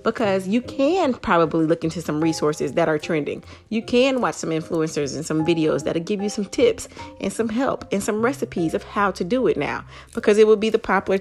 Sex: female